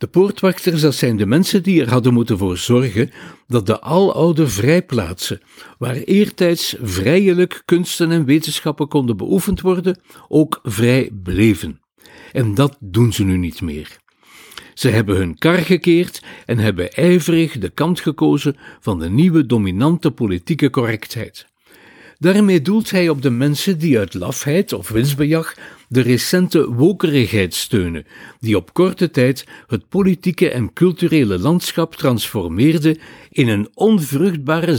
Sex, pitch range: male, 115-175 Hz